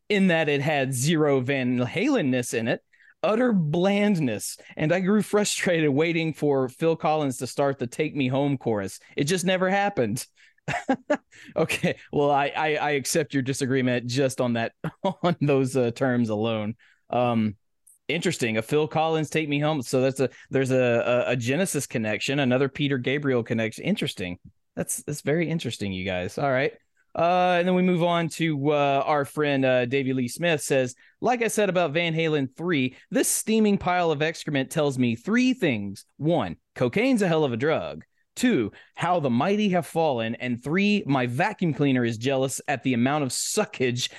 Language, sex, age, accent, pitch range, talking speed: English, male, 20-39, American, 125-165 Hz, 180 wpm